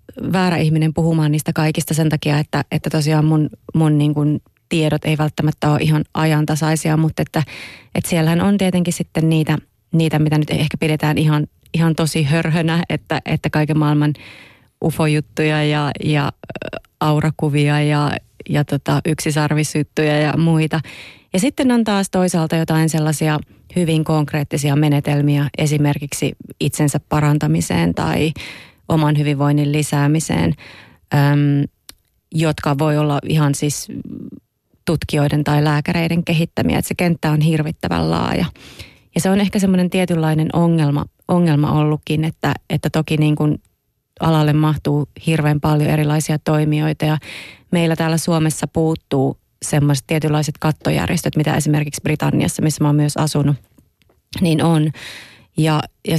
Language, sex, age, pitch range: Finnish, female, 30-49, 150-160 Hz